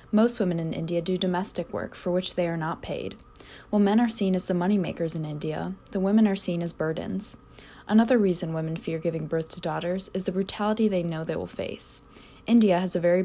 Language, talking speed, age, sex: English, 220 wpm, 20-39, female